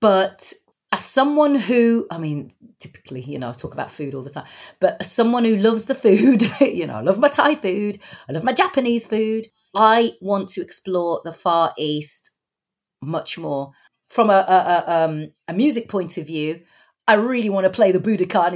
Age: 40-59